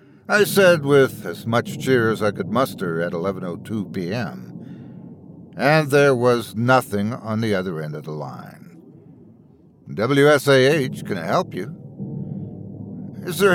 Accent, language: American, English